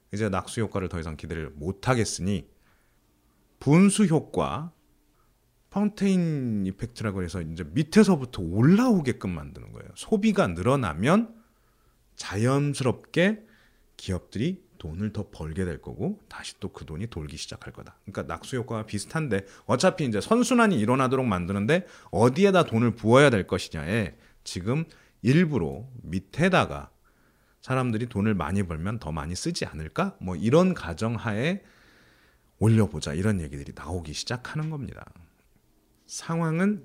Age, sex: 30-49, male